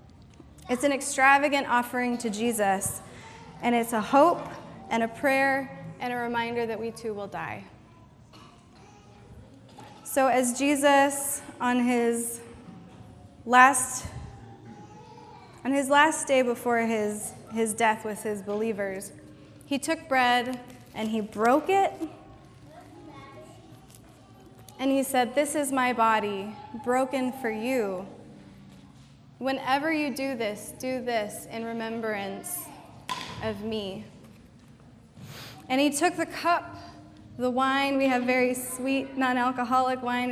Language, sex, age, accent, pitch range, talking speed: English, female, 20-39, American, 210-265 Hz, 115 wpm